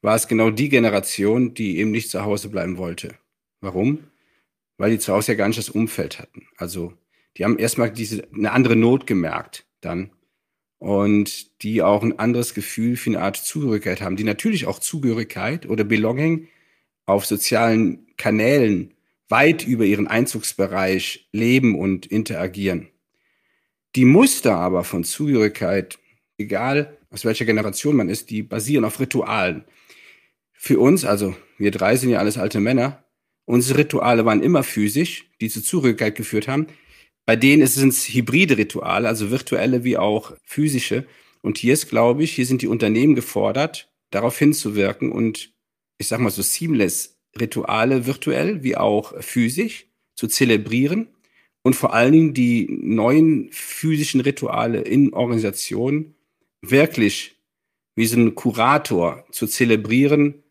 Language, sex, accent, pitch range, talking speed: German, male, German, 105-135 Hz, 145 wpm